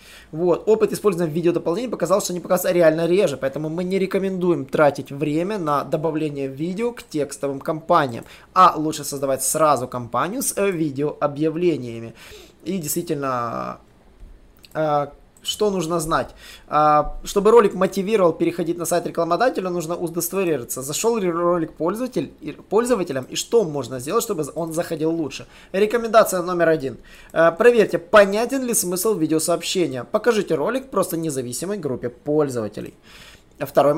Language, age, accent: Russian, 20-39, native